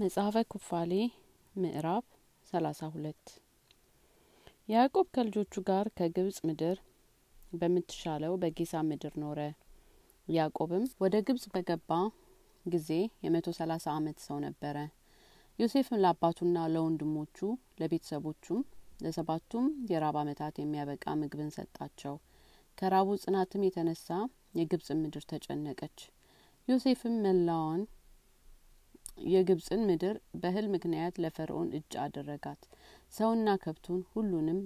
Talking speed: 90 wpm